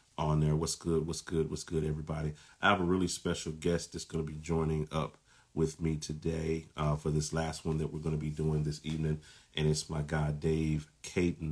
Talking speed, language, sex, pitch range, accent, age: 225 wpm, English, male, 75-80 Hz, American, 40-59